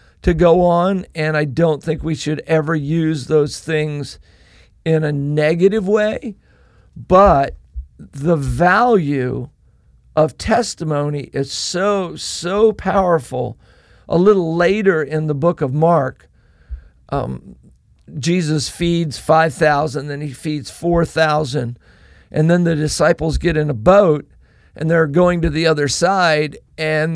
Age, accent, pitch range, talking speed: 50-69, American, 145-180 Hz, 130 wpm